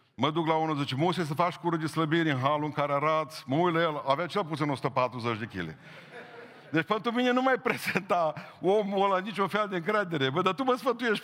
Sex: male